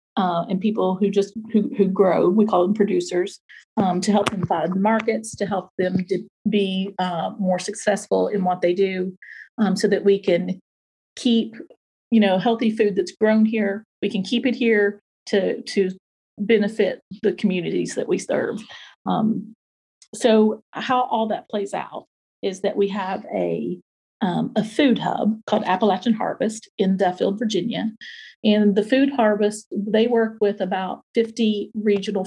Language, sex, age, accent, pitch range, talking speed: English, female, 40-59, American, 190-225 Hz, 165 wpm